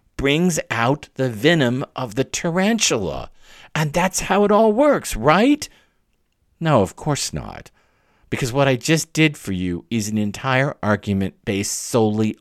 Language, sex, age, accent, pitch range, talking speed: English, male, 50-69, American, 105-140 Hz, 150 wpm